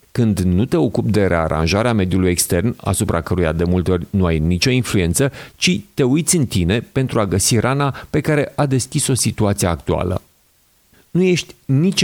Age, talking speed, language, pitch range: 40-59, 180 wpm, Hungarian, 90-135 Hz